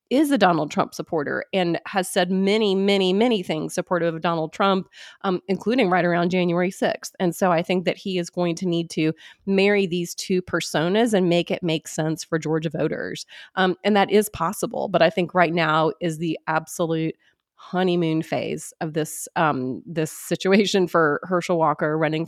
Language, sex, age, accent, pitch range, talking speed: English, female, 30-49, American, 160-185 Hz, 185 wpm